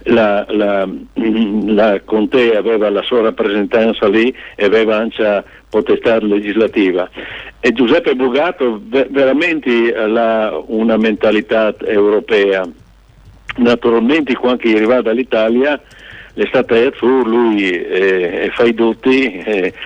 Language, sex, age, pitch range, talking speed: Italian, male, 60-79, 100-120 Hz, 120 wpm